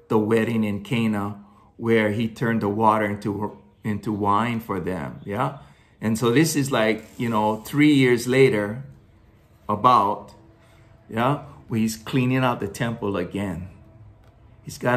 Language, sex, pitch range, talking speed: English, male, 100-135 Hz, 140 wpm